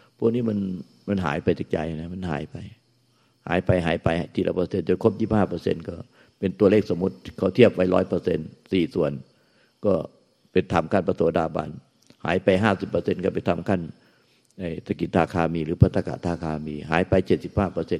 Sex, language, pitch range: male, Thai, 85-105 Hz